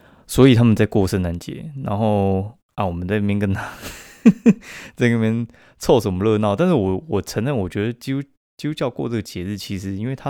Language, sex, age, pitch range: Chinese, male, 20-39, 90-115 Hz